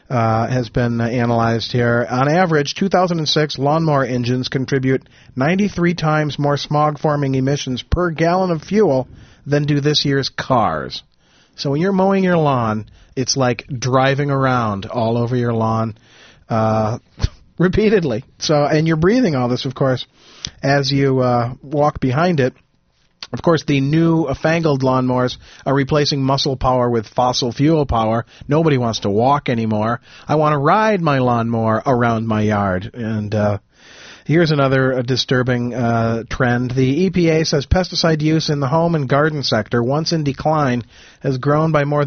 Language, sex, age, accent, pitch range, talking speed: English, male, 40-59, American, 120-150 Hz, 155 wpm